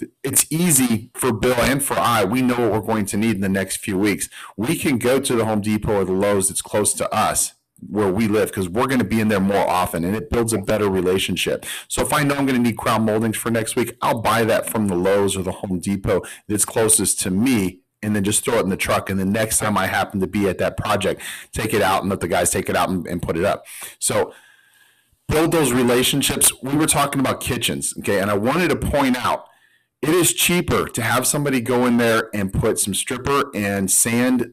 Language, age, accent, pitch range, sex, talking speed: English, 40-59, American, 100-125 Hz, male, 250 wpm